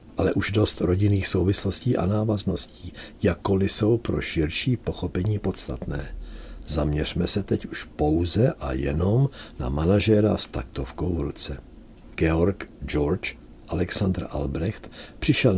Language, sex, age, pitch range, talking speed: Czech, male, 60-79, 80-100 Hz, 120 wpm